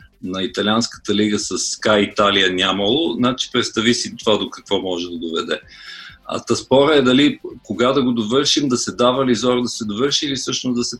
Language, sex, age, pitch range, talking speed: Bulgarian, male, 50-69, 110-130 Hz, 195 wpm